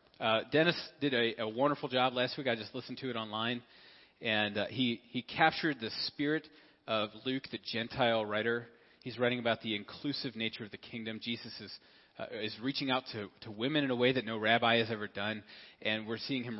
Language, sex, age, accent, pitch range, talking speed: English, male, 30-49, American, 110-140 Hz, 210 wpm